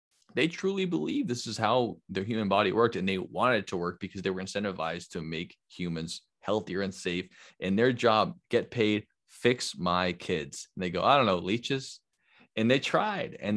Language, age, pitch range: English, 20-39, 90-105 Hz